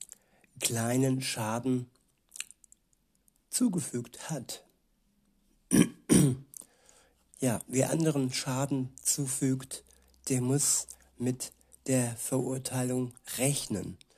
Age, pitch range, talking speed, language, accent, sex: 60-79, 120-140 Hz, 65 wpm, German, German, male